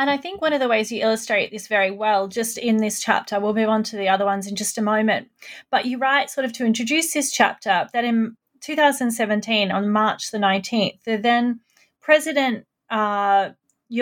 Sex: female